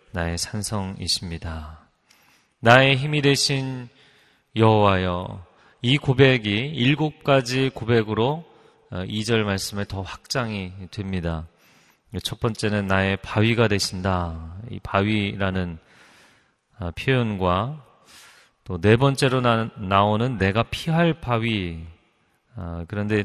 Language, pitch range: Korean, 95-115 Hz